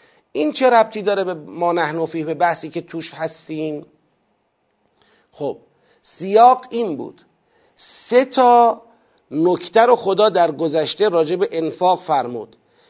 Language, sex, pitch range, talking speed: Persian, male, 165-240 Hz, 115 wpm